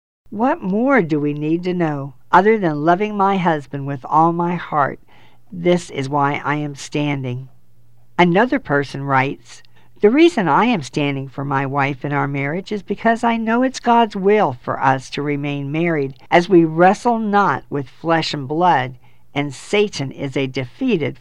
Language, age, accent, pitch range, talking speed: English, 50-69, American, 135-175 Hz, 175 wpm